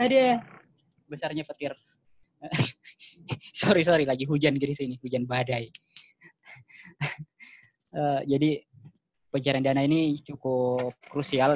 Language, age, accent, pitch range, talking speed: Indonesian, 20-39, native, 125-150 Hz, 90 wpm